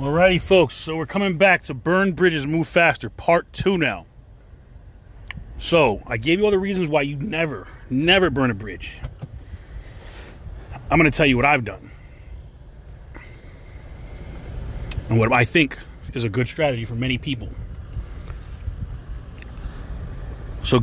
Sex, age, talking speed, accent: male, 30-49, 140 wpm, American